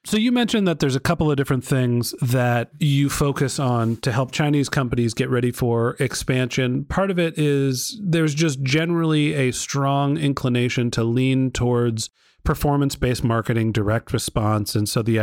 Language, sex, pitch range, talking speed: English, male, 120-140 Hz, 165 wpm